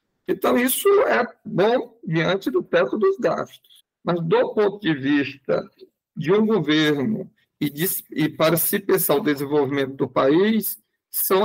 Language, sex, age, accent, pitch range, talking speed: Portuguese, male, 50-69, Brazilian, 150-200 Hz, 145 wpm